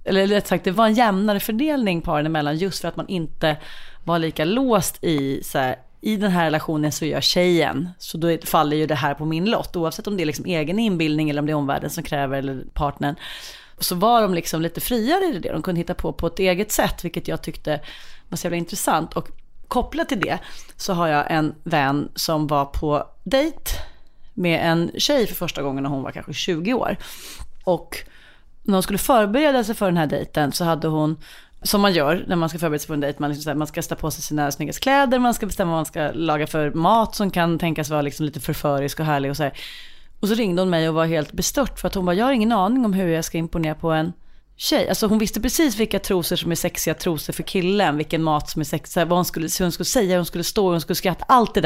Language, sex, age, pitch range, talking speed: Swedish, female, 30-49, 155-195 Hz, 255 wpm